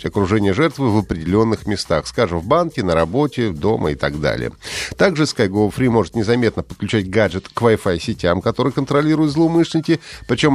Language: Russian